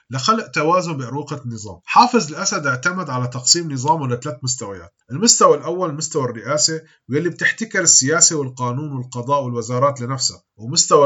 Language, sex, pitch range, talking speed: Arabic, male, 130-175 Hz, 130 wpm